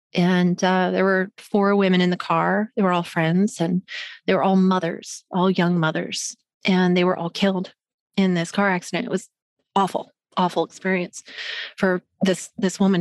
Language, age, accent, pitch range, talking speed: English, 30-49, American, 175-210 Hz, 180 wpm